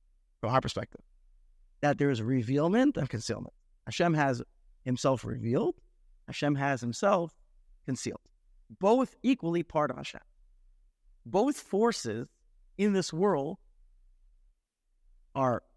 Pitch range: 135-230 Hz